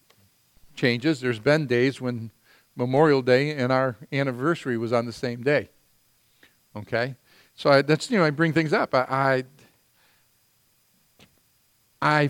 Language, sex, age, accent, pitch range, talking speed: English, male, 50-69, American, 120-140 Hz, 130 wpm